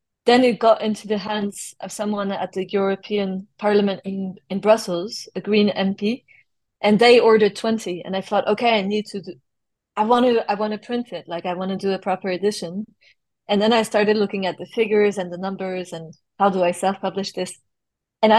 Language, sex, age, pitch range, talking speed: English, female, 30-49, 185-215 Hz, 210 wpm